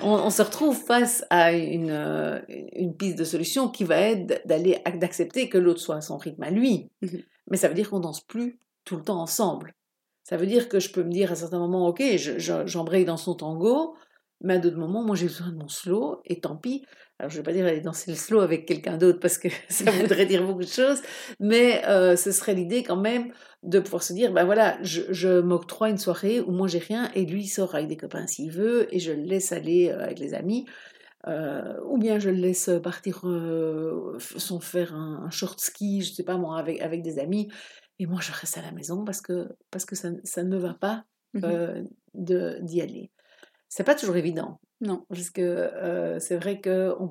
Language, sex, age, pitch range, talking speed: French, female, 60-79, 170-200 Hz, 235 wpm